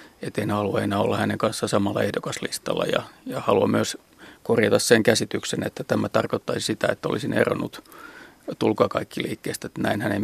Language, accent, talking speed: Finnish, native, 145 wpm